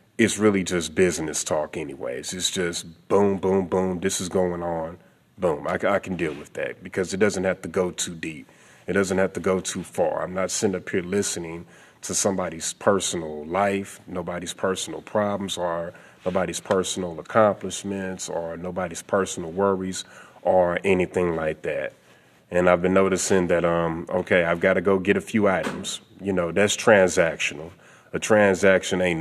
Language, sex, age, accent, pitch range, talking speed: English, male, 30-49, American, 85-100 Hz, 170 wpm